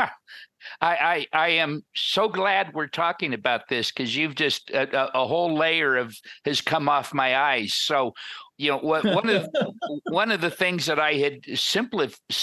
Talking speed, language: 180 wpm, English